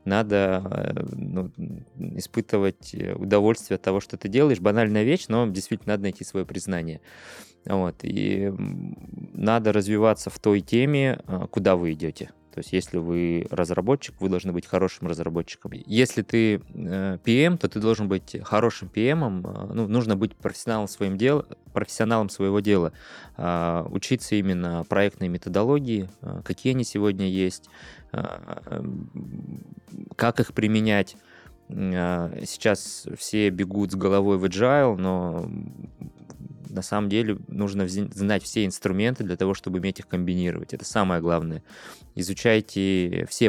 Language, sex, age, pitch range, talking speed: Russian, male, 20-39, 90-110 Hz, 130 wpm